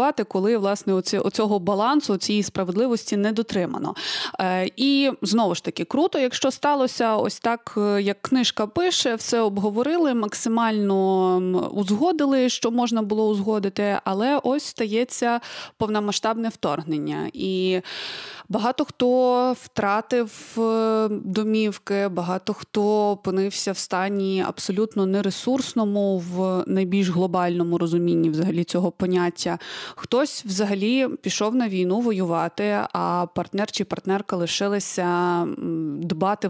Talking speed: 105 wpm